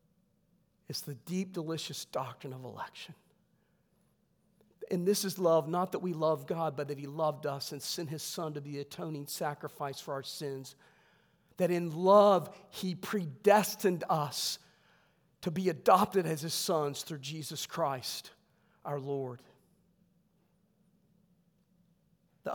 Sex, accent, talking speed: male, American, 135 wpm